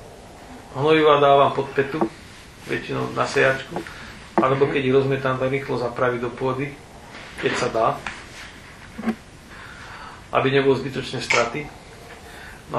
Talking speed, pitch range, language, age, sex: 110 wpm, 125-140 Hz, Slovak, 40-59, male